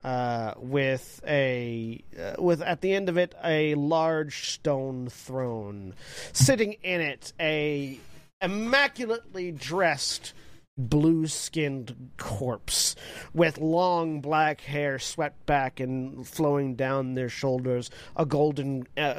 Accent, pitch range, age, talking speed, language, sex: American, 125-150 Hz, 40-59, 115 wpm, English, male